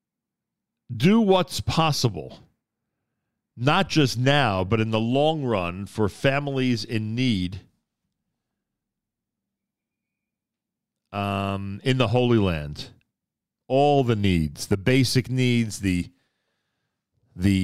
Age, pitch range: 40-59, 95-120 Hz